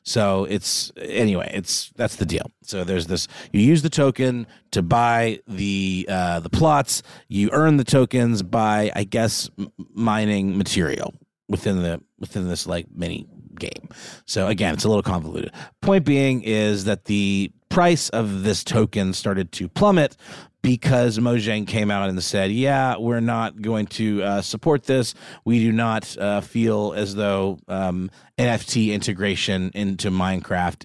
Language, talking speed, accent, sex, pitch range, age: English, 160 wpm, American, male, 100-130 Hz, 30-49